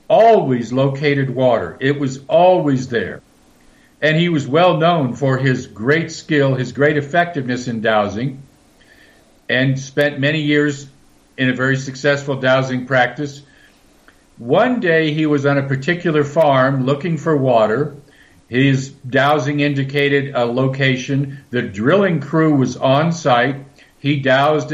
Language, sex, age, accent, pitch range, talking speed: English, male, 50-69, American, 130-155 Hz, 135 wpm